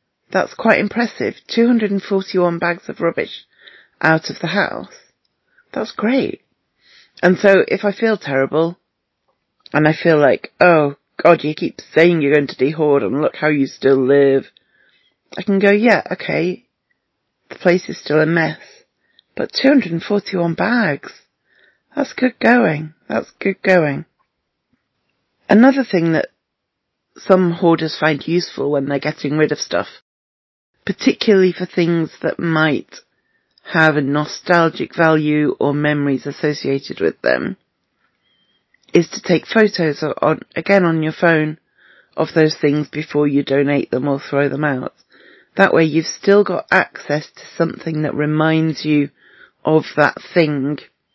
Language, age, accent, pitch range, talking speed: English, 30-49, British, 150-195 Hz, 140 wpm